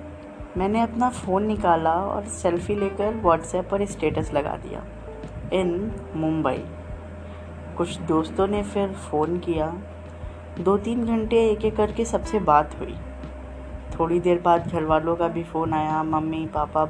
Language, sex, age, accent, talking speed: Hindi, female, 20-39, native, 140 wpm